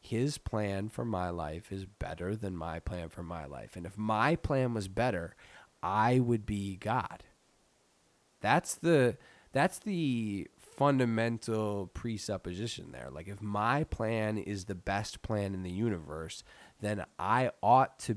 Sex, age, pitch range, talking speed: male, 20-39, 95-115 Hz, 150 wpm